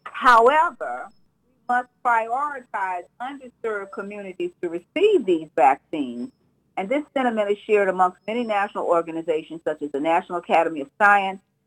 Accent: American